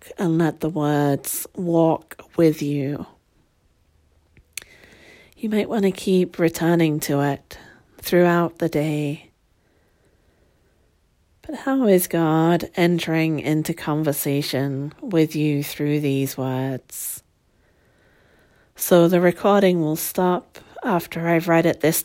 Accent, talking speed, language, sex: British, 110 wpm, English, female